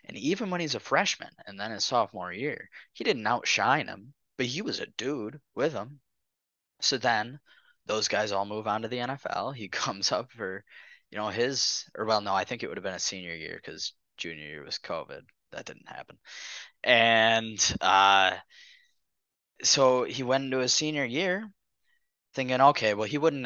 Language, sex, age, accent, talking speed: English, male, 10-29, American, 185 wpm